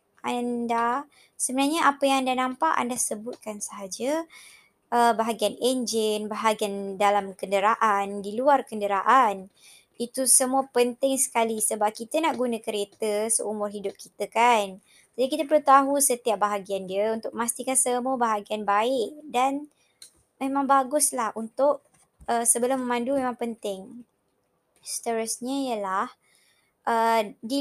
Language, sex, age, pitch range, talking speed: Malay, male, 20-39, 210-265 Hz, 120 wpm